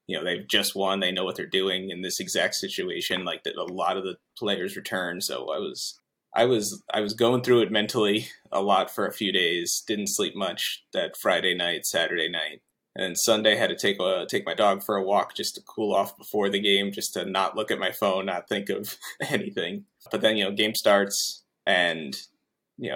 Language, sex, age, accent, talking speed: English, male, 20-39, American, 225 wpm